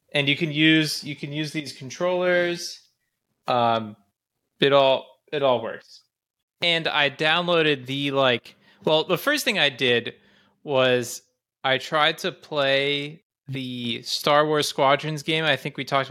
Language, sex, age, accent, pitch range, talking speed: English, male, 20-39, American, 125-165 Hz, 150 wpm